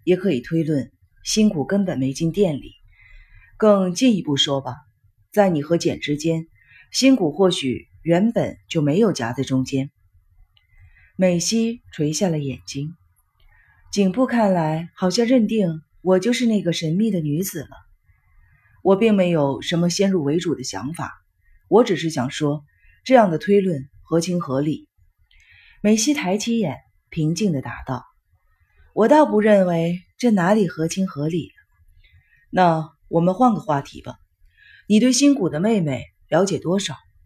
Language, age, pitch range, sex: Chinese, 30-49, 130-195 Hz, female